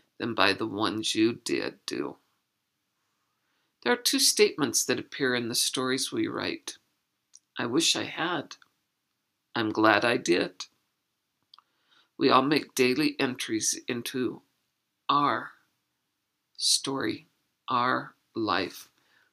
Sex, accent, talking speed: female, American, 110 wpm